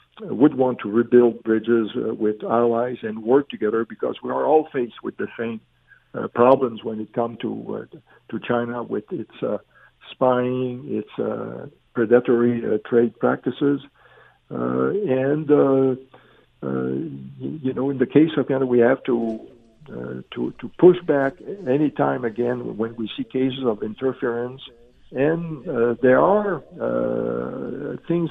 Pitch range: 115-140 Hz